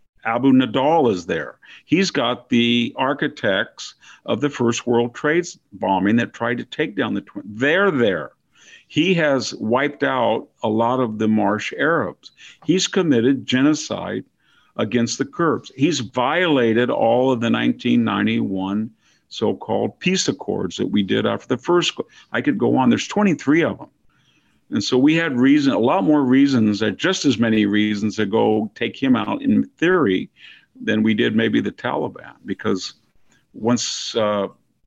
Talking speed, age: 155 wpm, 50-69